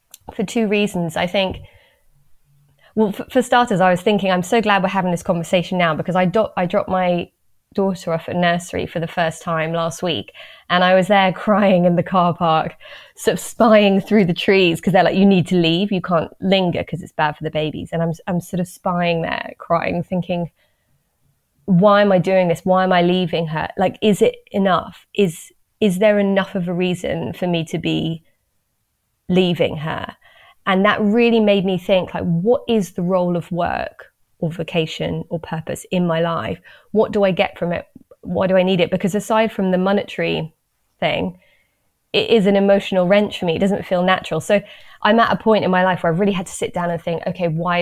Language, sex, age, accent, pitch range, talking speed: English, female, 20-39, British, 170-200 Hz, 215 wpm